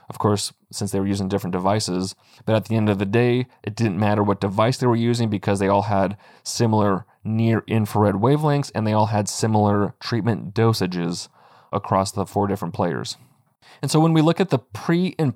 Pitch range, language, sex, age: 100-125 Hz, English, male, 30-49